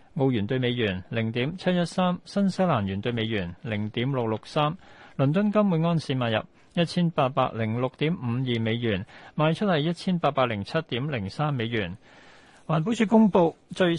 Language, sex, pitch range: Chinese, male, 115-160 Hz